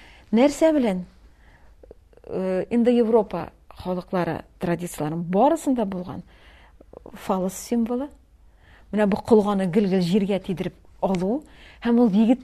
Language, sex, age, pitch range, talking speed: Russian, female, 40-59, 185-250 Hz, 80 wpm